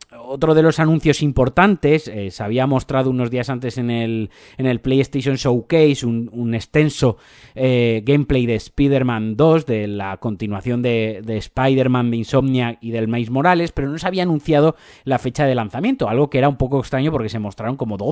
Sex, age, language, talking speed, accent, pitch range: male, 30-49, Spanish, 190 wpm, Spanish, 115-145 Hz